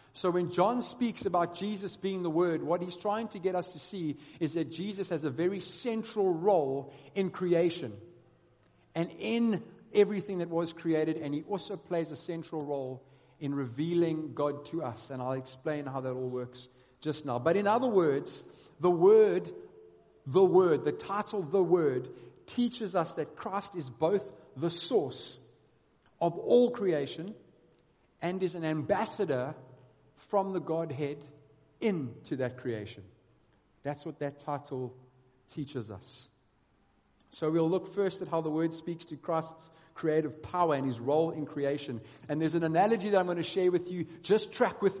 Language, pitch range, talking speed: English, 145-185 Hz, 165 wpm